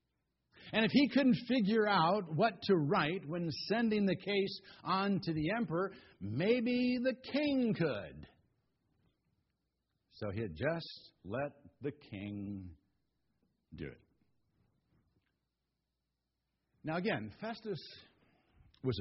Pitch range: 125-210 Hz